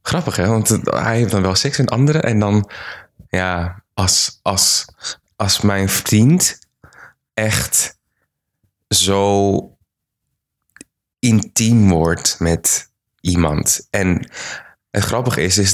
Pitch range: 85-105 Hz